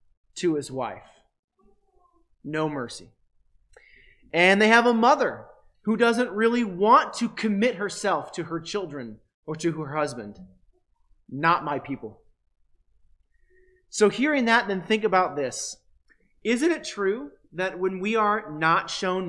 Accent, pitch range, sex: American, 160-215 Hz, male